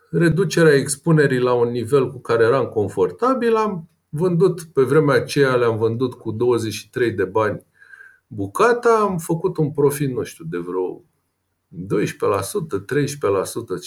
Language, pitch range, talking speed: Romanian, 135-225 Hz, 130 wpm